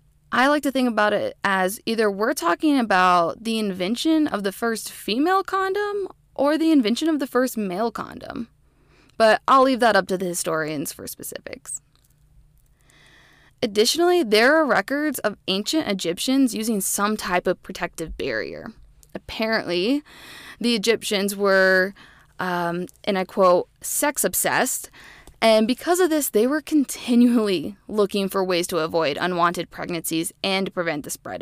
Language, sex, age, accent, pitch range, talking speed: English, female, 20-39, American, 185-255 Hz, 145 wpm